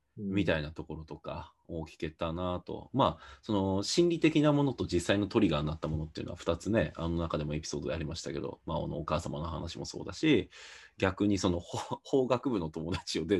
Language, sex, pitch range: Japanese, male, 80-140 Hz